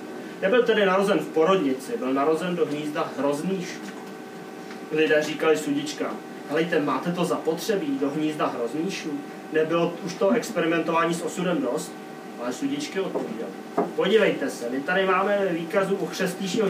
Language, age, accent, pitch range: Czech, 30-49, native, 150-210 Hz